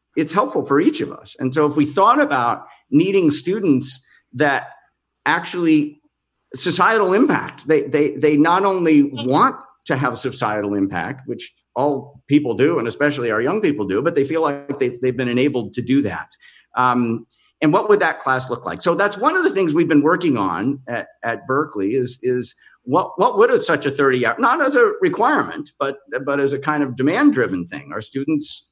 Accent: American